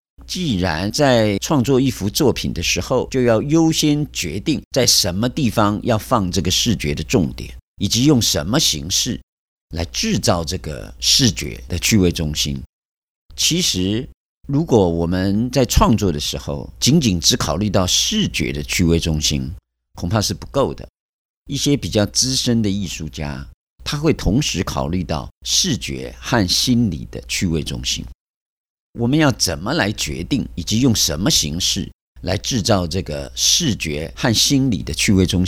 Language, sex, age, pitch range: Chinese, male, 50-69, 80-115 Hz